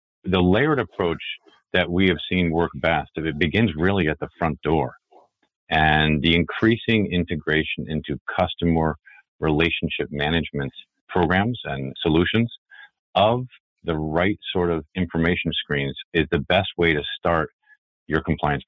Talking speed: 140 wpm